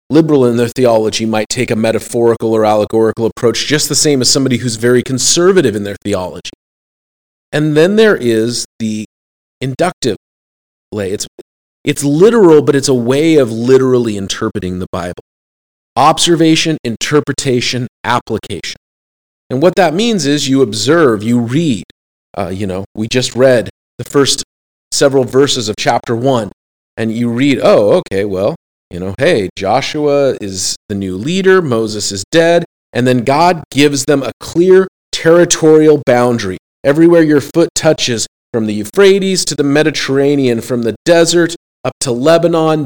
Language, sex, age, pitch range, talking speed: English, male, 30-49, 105-150 Hz, 150 wpm